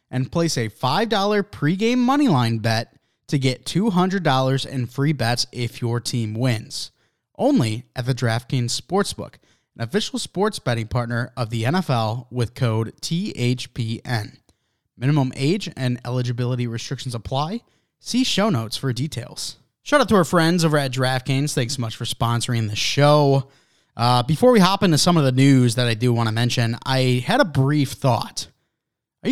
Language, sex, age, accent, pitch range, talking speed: English, male, 20-39, American, 115-155 Hz, 165 wpm